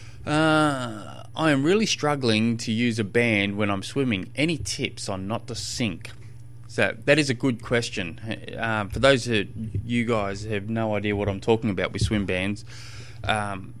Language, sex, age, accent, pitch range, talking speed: English, male, 20-39, Australian, 105-120 Hz, 180 wpm